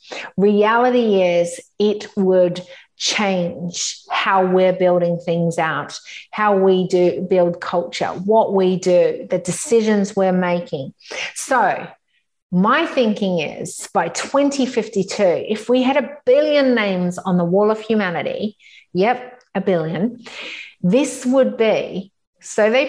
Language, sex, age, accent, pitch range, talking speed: English, female, 40-59, Australian, 180-240 Hz, 125 wpm